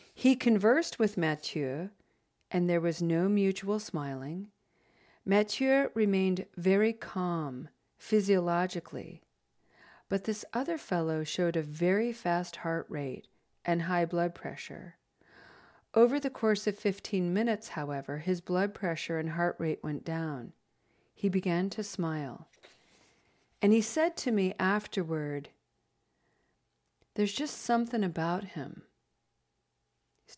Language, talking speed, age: English, 120 wpm, 40-59